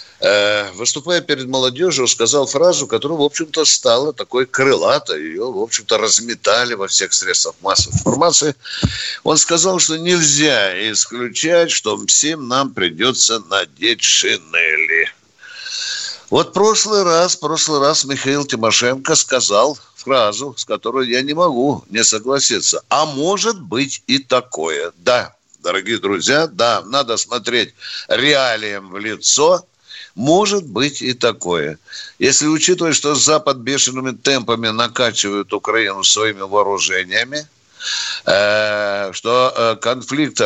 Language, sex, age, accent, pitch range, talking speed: Russian, male, 60-79, native, 120-170 Hz, 115 wpm